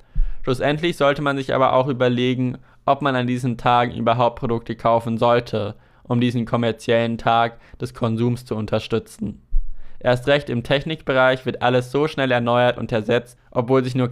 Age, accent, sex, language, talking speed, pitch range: 20-39, German, male, German, 160 wpm, 115-130 Hz